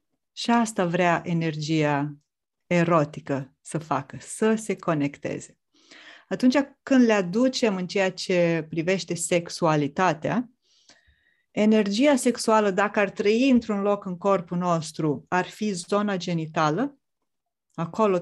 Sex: female